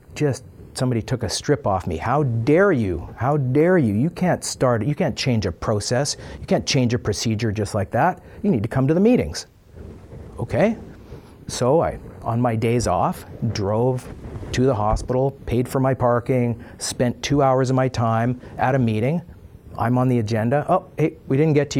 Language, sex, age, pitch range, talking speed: English, male, 40-59, 105-130 Hz, 195 wpm